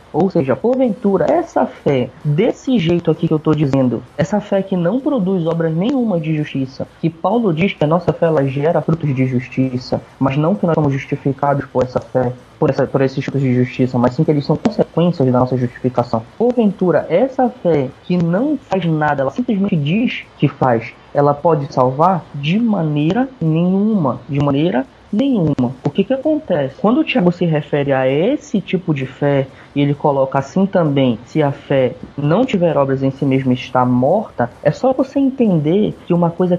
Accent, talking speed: Brazilian, 190 wpm